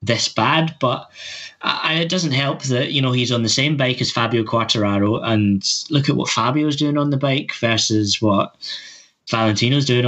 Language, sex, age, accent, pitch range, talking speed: Greek, male, 10-29, British, 110-135 Hz, 185 wpm